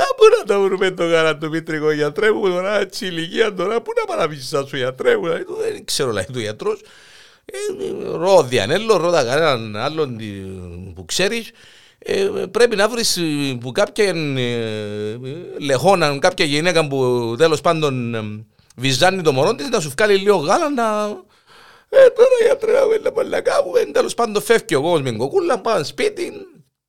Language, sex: Greek, male